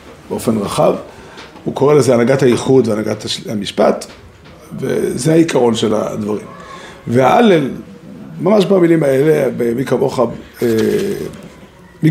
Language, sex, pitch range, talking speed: Hebrew, male, 120-180 Hz, 115 wpm